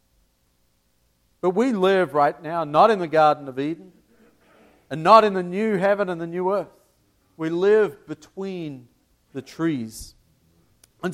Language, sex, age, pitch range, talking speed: English, male, 50-69, 95-160 Hz, 145 wpm